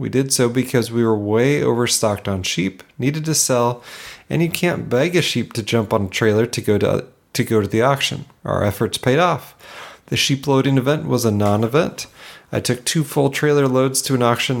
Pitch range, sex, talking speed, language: 110-145 Hz, male, 220 wpm, English